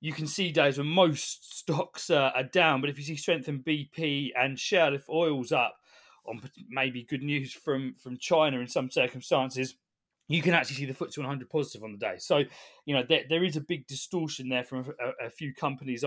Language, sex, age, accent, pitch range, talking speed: English, male, 20-39, British, 135-175 Hz, 215 wpm